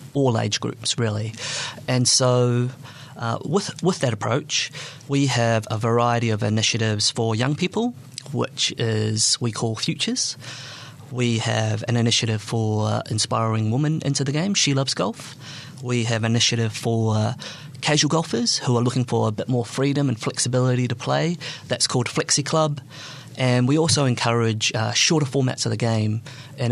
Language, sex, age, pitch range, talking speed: English, male, 30-49, 115-140 Hz, 165 wpm